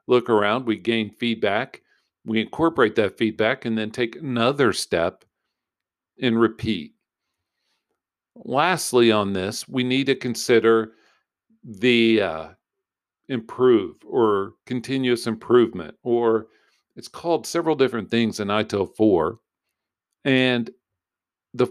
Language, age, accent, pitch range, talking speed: English, 50-69, American, 110-135 Hz, 110 wpm